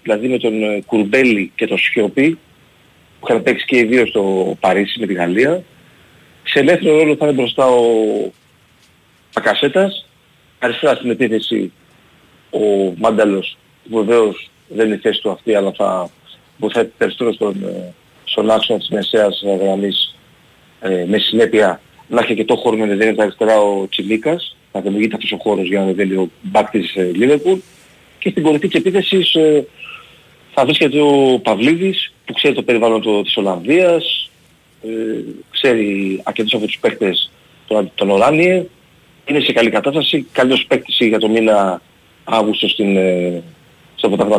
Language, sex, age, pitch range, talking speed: Greek, male, 40-59, 100-140 Hz, 145 wpm